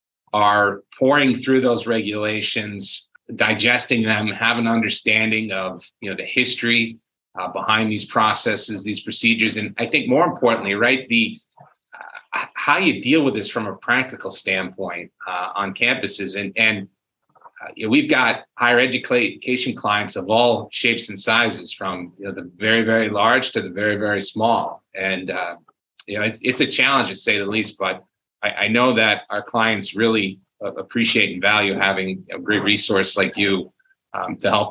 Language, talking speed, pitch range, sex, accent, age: English, 170 wpm, 105-135 Hz, male, American, 30-49